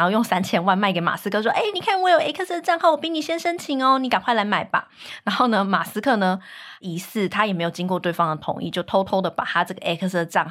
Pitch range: 175-235 Hz